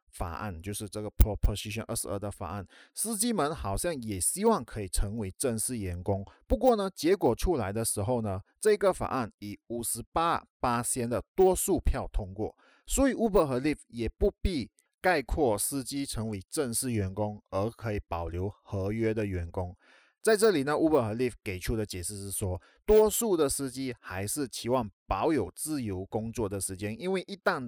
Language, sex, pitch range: Chinese, male, 100-130 Hz